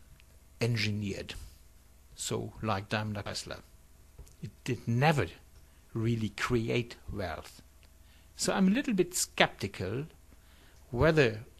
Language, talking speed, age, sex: English, 95 wpm, 60-79, male